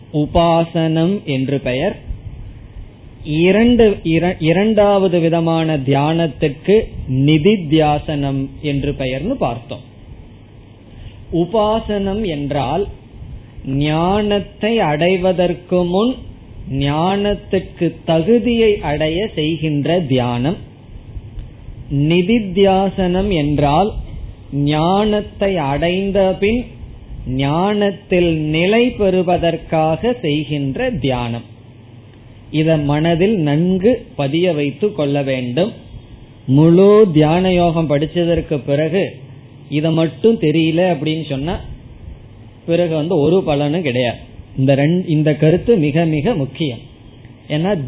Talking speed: 70 wpm